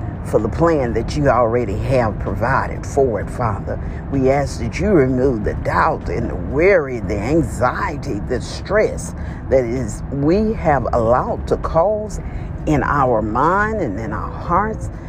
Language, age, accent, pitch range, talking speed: English, 50-69, American, 90-140 Hz, 155 wpm